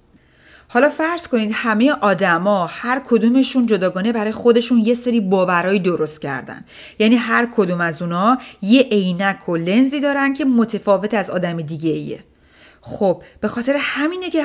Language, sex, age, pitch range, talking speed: Persian, female, 30-49, 195-250 Hz, 150 wpm